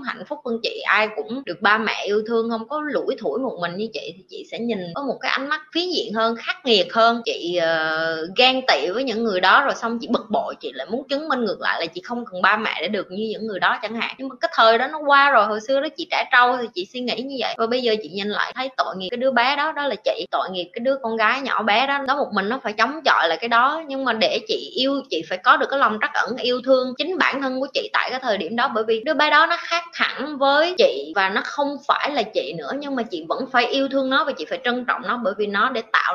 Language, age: Vietnamese, 20-39